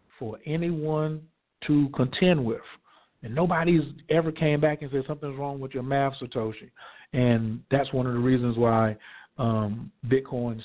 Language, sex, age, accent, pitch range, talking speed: English, male, 50-69, American, 125-155 Hz, 150 wpm